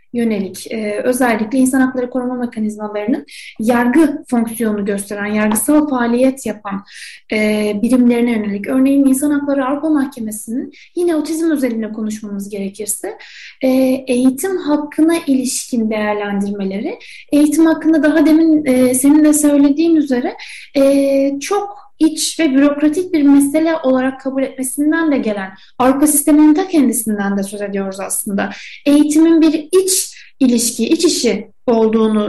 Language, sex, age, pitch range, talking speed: Turkish, female, 10-29, 230-310 Hz, 125 wpm